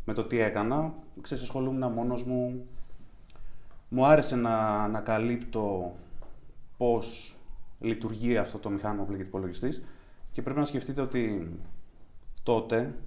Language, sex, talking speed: Greek, male, 120 wpm